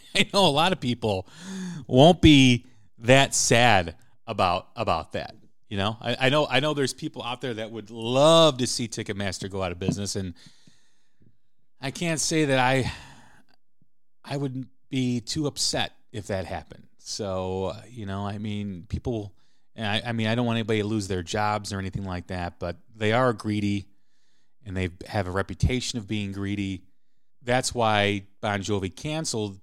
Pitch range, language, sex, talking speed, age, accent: 100-130 Hz, English, male, 175 wpm, 30-49, American